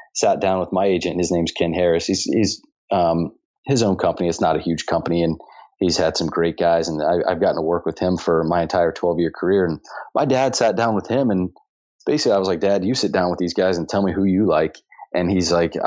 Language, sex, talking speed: English, male, 255 wpm